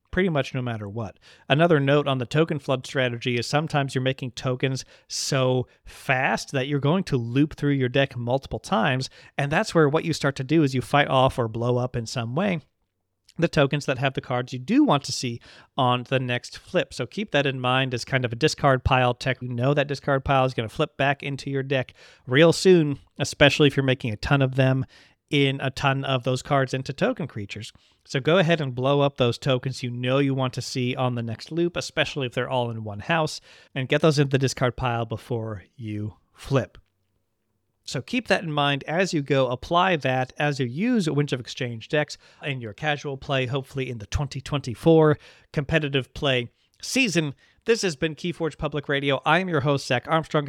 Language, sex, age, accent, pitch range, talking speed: English, male, 40-59, American, 125-150 Hz, 215 wpm